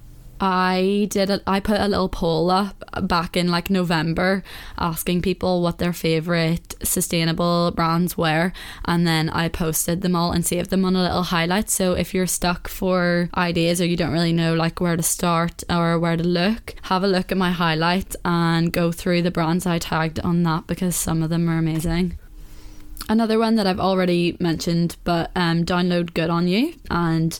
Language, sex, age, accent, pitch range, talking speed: English, female, 10-29, British, 170-190 Hz, 190 wpm